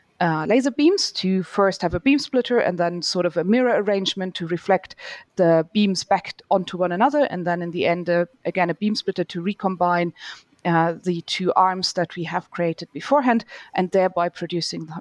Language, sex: English, female